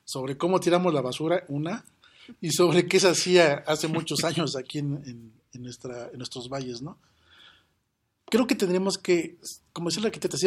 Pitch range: 135-180 Hz